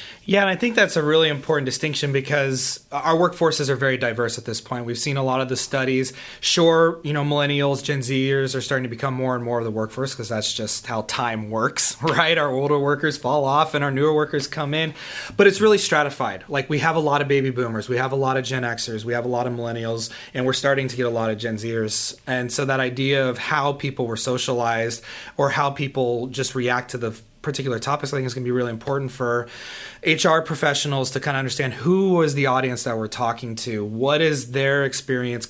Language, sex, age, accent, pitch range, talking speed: English, male, 30-49, American, 120-150 Hz, 235 wpm